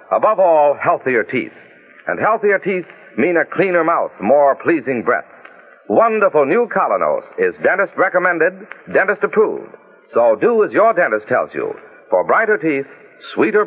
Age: 60-79